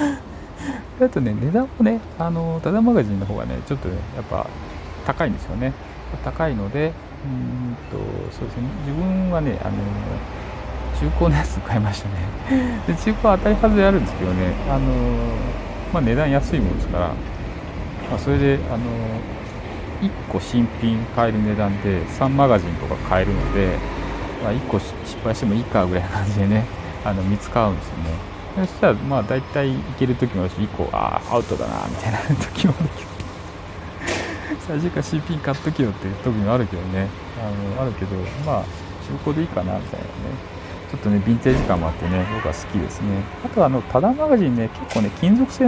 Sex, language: male, Japanese